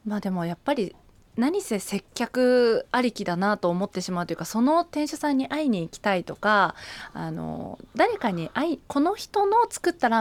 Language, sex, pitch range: Japanese, female, 175-245 Hz